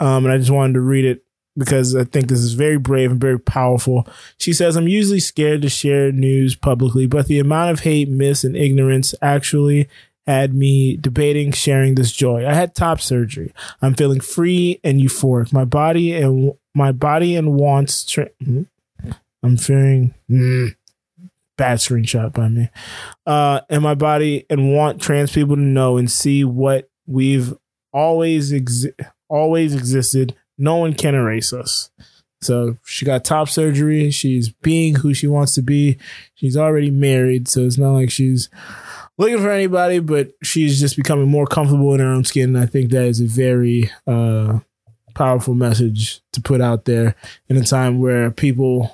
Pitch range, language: 125-145 Hz, English